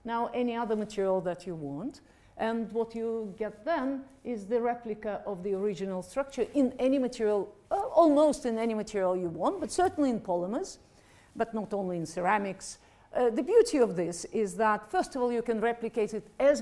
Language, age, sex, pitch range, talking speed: English, 50-69, female, 200-265 Hz, 190 wpm